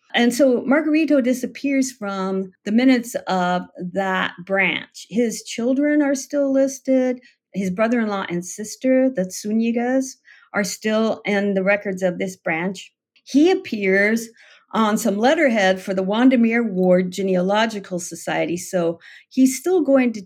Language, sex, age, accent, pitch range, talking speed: English, female, 50-69, American, 185-250 Hz, 135 wpm